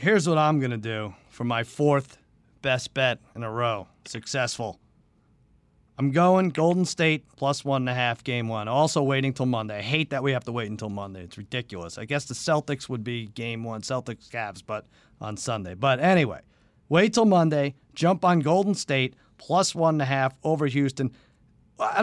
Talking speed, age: 195 wpm, 40-59